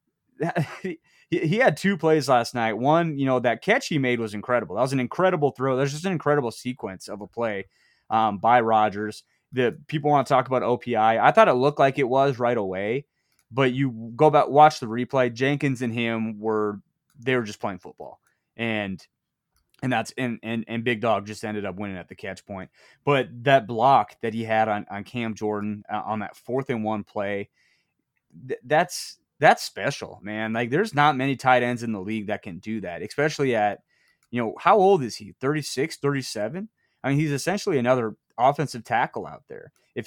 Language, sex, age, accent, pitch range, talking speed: English, male, 30-49, American, 110-140 Hz, 200 wpm